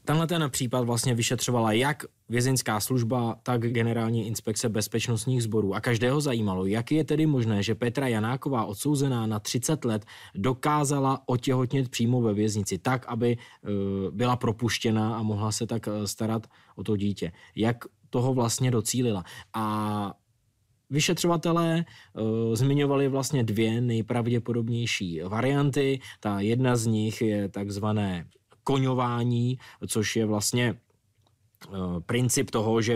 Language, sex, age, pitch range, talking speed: Czech, male, 20-39, 105-120 Hz, 120 wpm